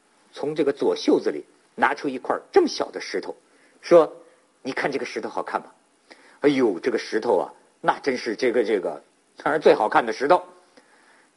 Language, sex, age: Chinese, male, 50-69